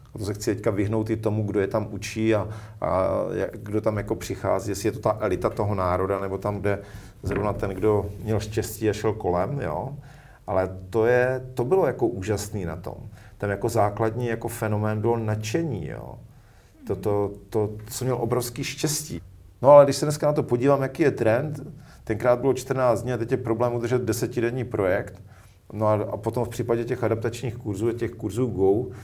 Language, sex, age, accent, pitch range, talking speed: Czech, male, 40-59, native, 100-115 Hz, 195 wpm